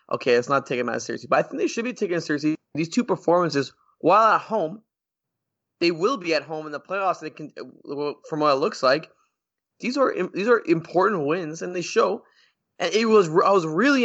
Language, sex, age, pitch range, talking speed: English, male, 20-39, 140-175 Hz, 220 wpm